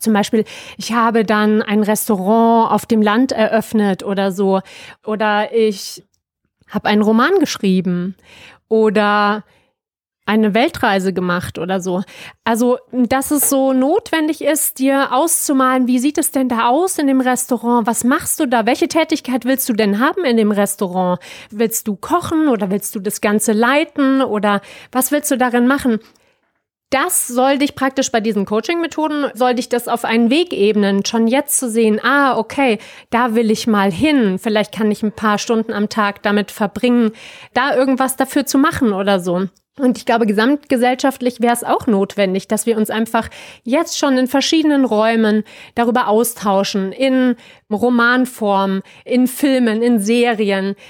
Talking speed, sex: 160 wpm, female